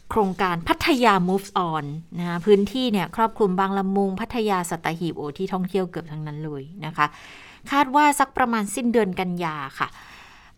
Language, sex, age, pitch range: Thai, female, 30-49, 170-220 Hz